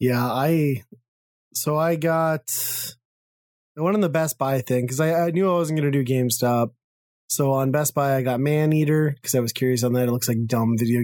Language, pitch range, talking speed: English, 120-145 Hz, 215 wpm